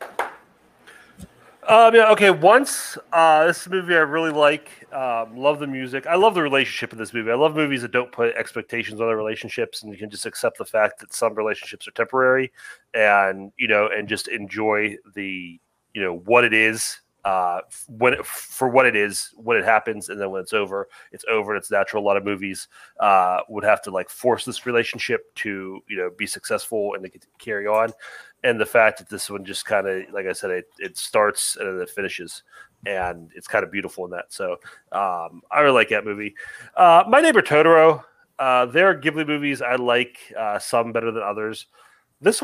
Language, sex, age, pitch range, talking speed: English, male, 30-49, 110-160 Hz, 210 wpm